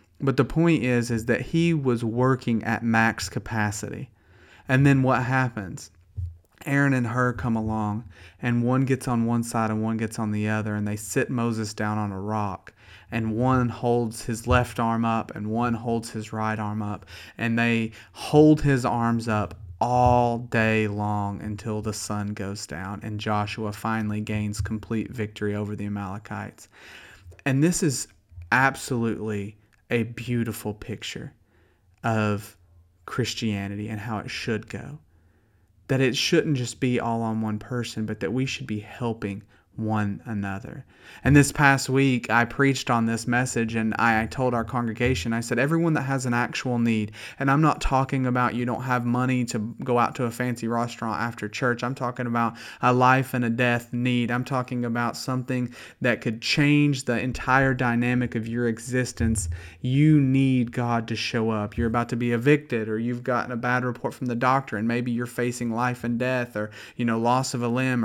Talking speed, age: 180 wpm, 30-49